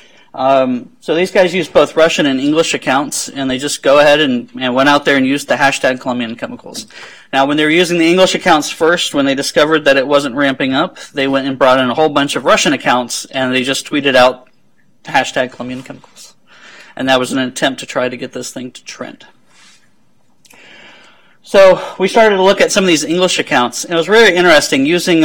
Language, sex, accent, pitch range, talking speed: English, male, American, 120-145 Hz, 220 wpm